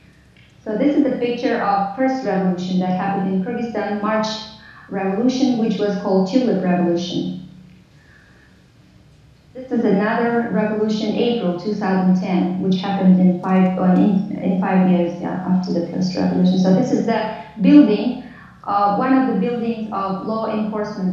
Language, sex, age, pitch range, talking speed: English, female, 30-49, 190-240 Hz, 145 wpm